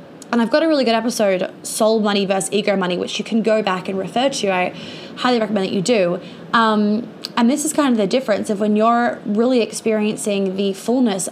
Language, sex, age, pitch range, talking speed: English, female, 20-39, 190-220 Hz, 215 wpm